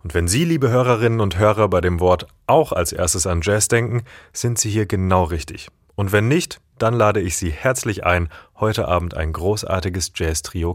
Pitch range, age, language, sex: 85-115 Hz, 30-49, German, male